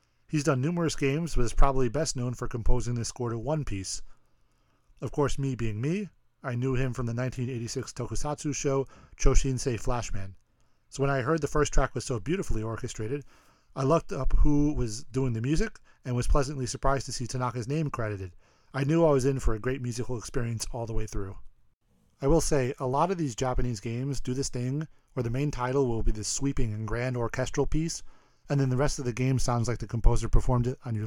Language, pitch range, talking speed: English, 115-140 Hz, 215 wpm